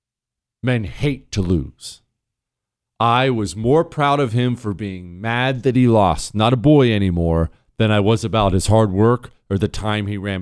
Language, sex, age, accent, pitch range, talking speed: English, male, 40-59, American, 105-140 Hz, 185 wpm